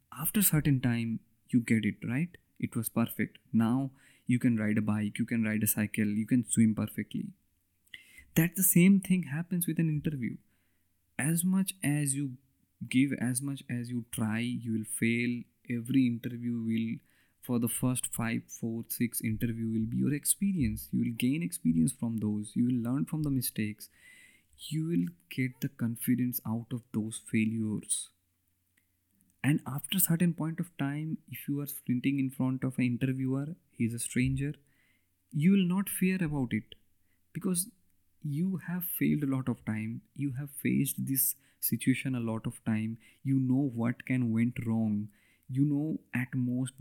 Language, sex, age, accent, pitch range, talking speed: Bengali, male, 20-39, native, 110-135 Hz, 170 wpm